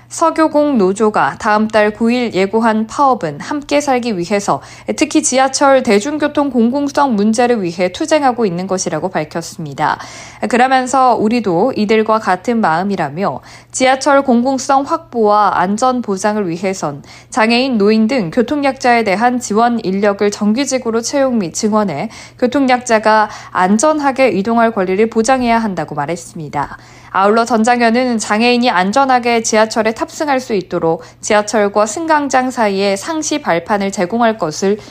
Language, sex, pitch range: Korean, female, 195-255 Hz